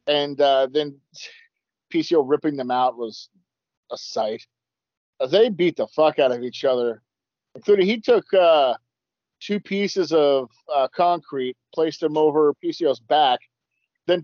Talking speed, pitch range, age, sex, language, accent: 140 wpm, 140-190 Hz, 40-59, male, English, American